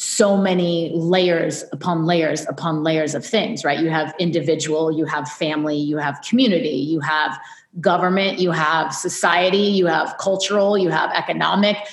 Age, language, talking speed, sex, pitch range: 30-49, English, 155 wpm, female, 160-190 Hz